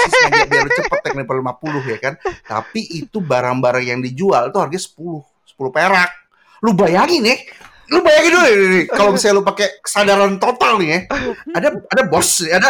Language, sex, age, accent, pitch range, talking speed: Indonesian, male, 30-49, native, 150-220 Hz, 150 wpm